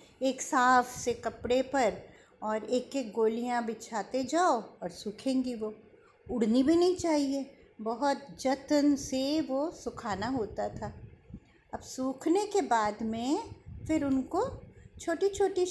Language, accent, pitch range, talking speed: Hindi, native, 235-330 Hz, 130 wpm